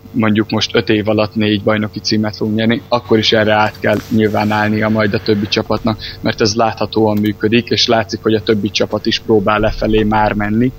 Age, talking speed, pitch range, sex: 20-39, 200 wpm, 110-115 Hz, male